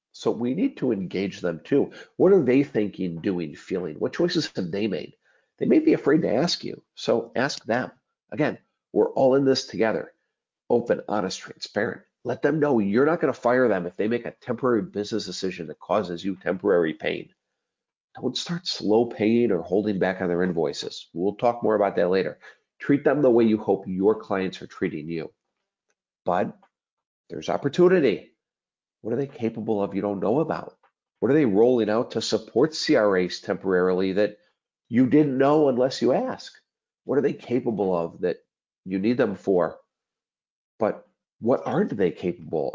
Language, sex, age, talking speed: English, male, 50-69, 180 wpm